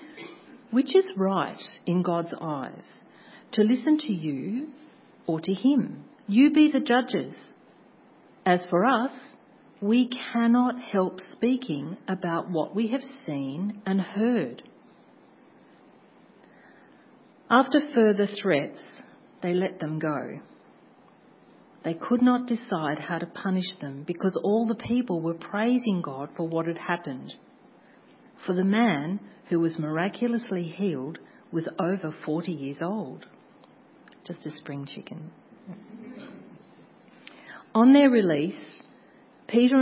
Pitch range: 170-245 Hz